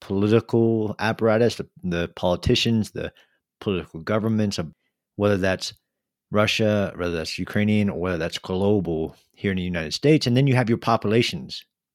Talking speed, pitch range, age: 135 wpm, 95-115 Hz, 40-59